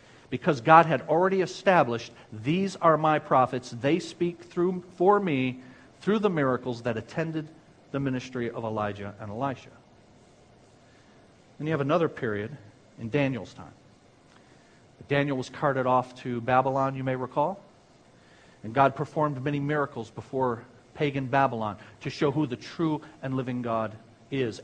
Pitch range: 120-150 Hz